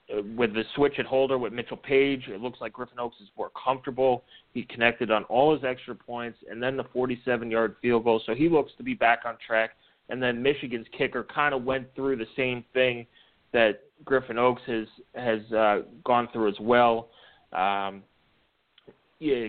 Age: 30-49